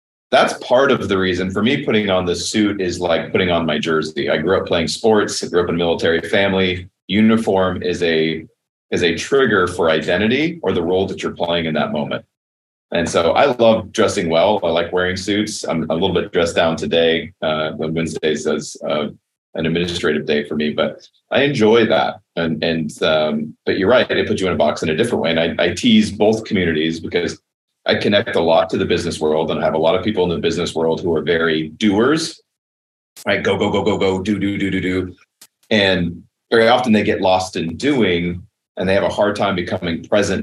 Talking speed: 225 wpm